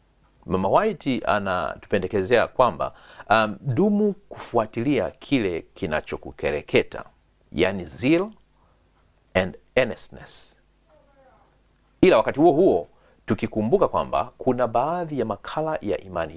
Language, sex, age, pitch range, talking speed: Swahili, male, 40-59, 100-155 Hz, 90 wpm